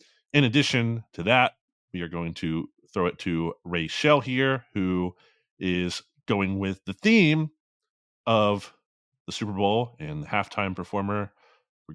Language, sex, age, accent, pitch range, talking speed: English, male, 30-49, American, 85-115 Hz, 140 wpm